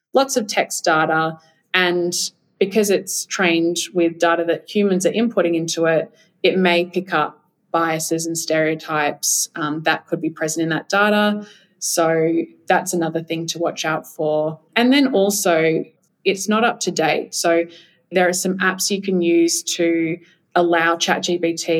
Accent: Australian